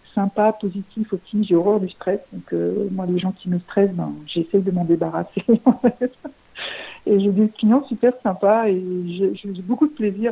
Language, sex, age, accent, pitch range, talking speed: French, female, 50-69, French, 190-225 Hz, 200 wpm